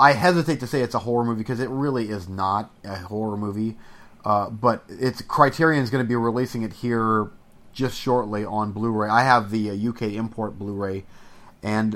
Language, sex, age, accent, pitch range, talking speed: English, male, 30-49, American, 110-140 Hz, 195 wpm